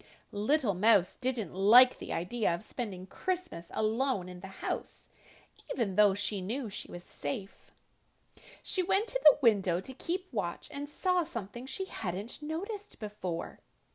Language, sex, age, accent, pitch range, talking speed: English, female, 30-49, American, 215-330 Hz, 150 wpm